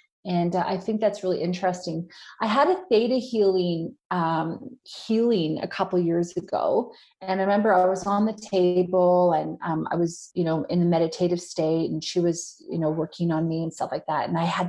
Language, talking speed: English, 210 wpm